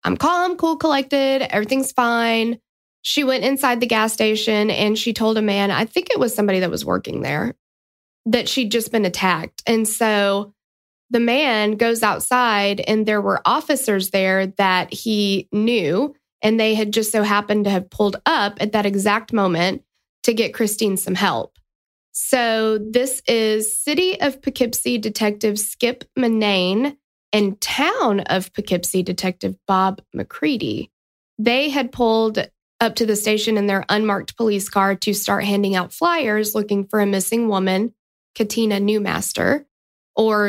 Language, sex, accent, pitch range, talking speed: English, female, American, 200-245 Hz, 155 wpm